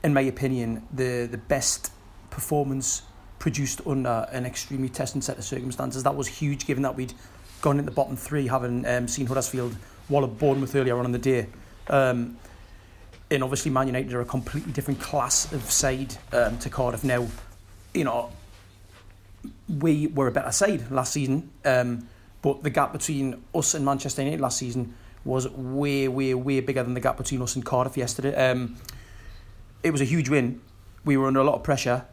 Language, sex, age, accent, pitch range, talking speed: English, male, 30-49, British, 120-140 Hz, 185 wpm